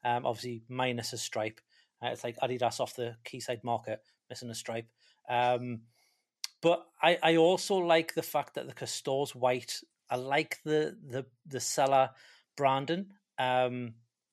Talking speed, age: 150 wpm, 30-49